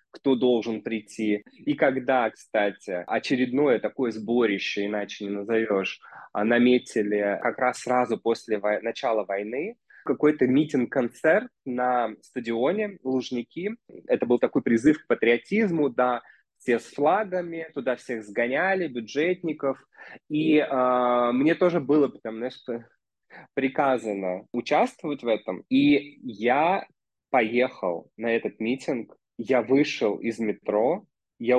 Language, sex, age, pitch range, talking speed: Russian, male, 20-39, 115-135 Hz, 120 wpm